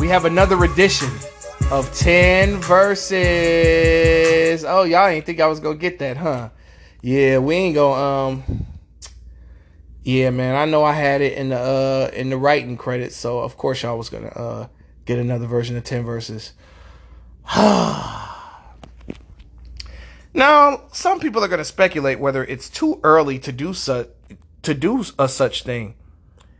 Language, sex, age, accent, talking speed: English, male, 20-39, American, 150 wpm